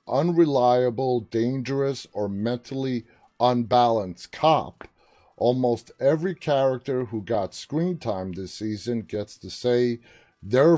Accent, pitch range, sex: American, 105-135 Hz, male